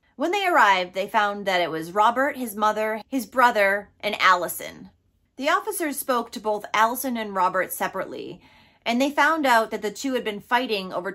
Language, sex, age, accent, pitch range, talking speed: English, female, 30-49, American, 190-265 Hz, 190 wpm